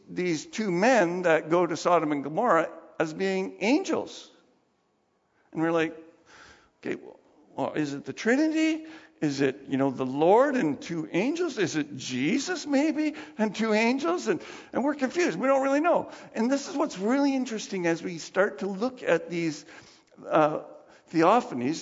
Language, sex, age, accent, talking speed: English, male, 60-79, American, 170 wpm